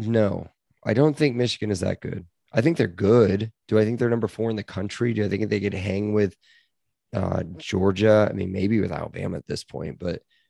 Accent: American